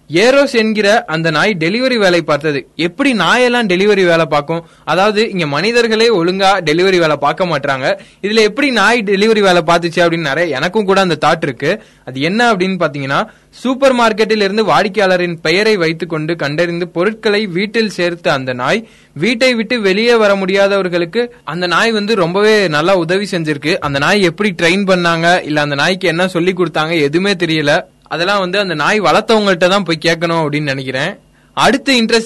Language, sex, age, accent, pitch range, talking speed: Tamil, male, 20-39, native, 165-215 Hz, 140 wpm